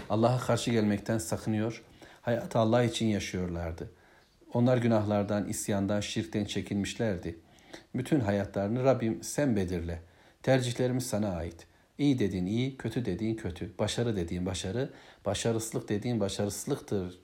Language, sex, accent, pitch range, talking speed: Turkish, male, native, 100-120 Hz, 115 wpm